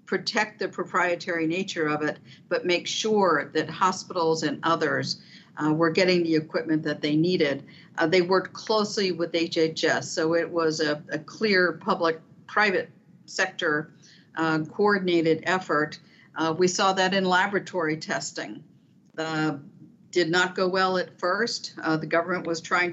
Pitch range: 160-185 Hz